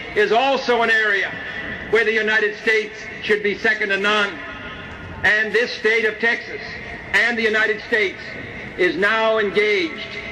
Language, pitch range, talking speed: English, 200-225 Hz, 145 wpm